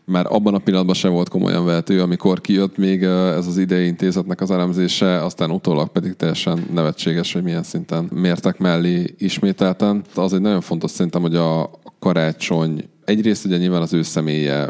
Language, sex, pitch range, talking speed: English, male, 75-90 Hz, 165 wpm